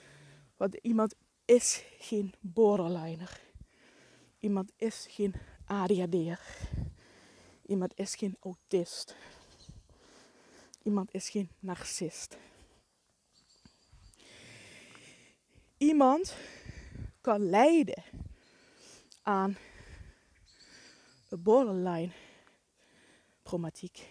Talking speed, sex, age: 55 wpm, female, 20-39